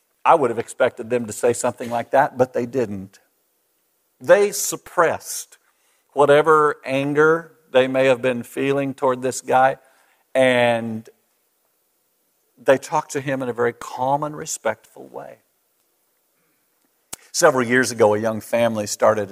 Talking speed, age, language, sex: 135 wpm, 50-69, English, male